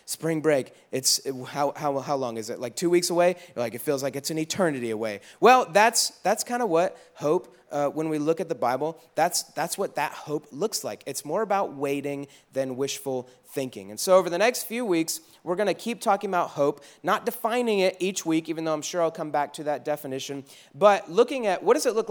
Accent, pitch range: American, 140-180 Hz